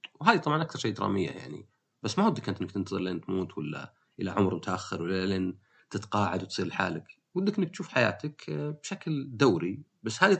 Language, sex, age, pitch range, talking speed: Arabic, male, 30-49, 95-130 Hz, 180 wpm